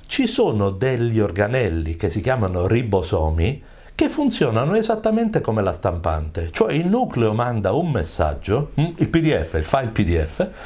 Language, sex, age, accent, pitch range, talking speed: Italian, male, 60-79, native, 90-145 Hz, 140 wpm